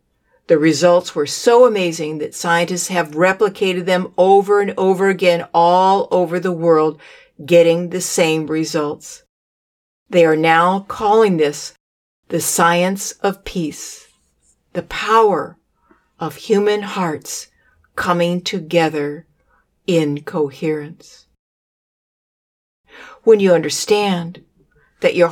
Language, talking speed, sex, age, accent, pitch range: English, 105 wpm, female, 50-69, American, 165-195 Hz